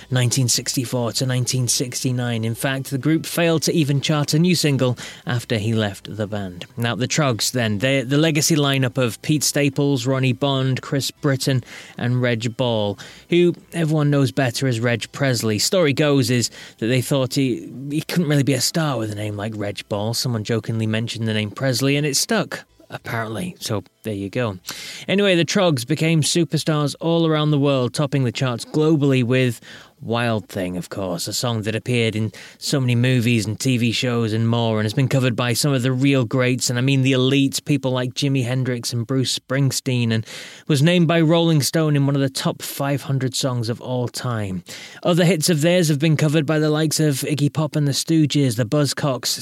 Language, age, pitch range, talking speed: English, 20-39, 120-145 Hz, 200 wpm